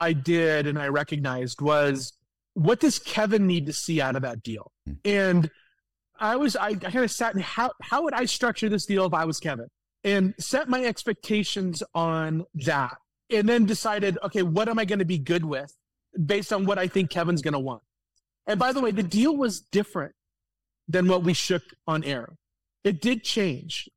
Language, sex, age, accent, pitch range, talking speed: English, male, 30-49, American, 160-210 Hz, 200 wpm